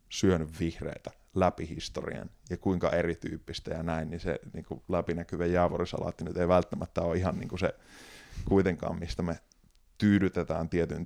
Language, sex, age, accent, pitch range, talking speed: Finnish, male, 20-39, native, 85-105 Hz, 125 wpm